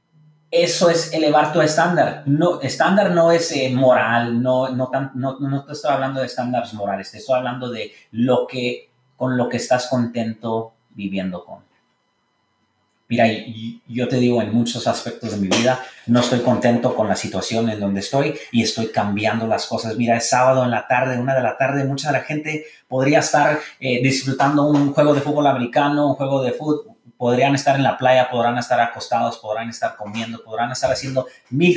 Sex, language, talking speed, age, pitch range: male, English, 185 wpm, 30-49, 120-150 Hz